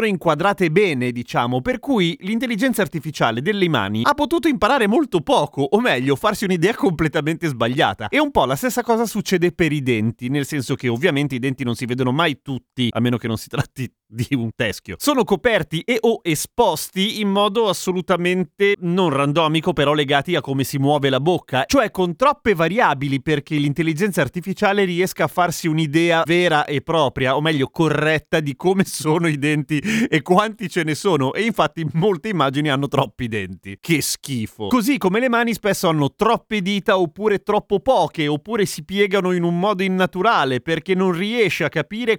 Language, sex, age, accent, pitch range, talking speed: Italian, male, 30-49, native, 140-200 Hz, 180 wpm